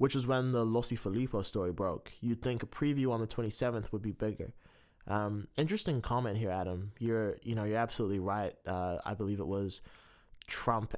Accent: American